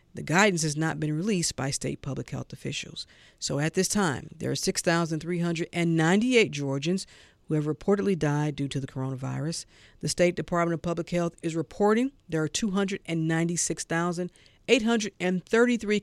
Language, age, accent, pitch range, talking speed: English, 50-69, American, 150-190 Hz, 140 wpm